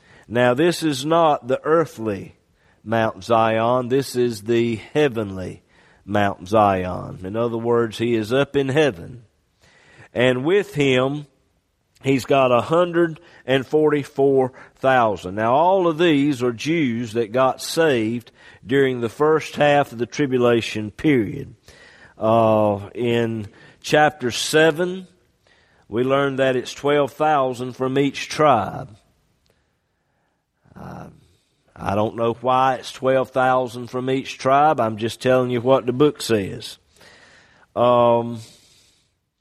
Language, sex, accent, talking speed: English, male, American, 115 wpm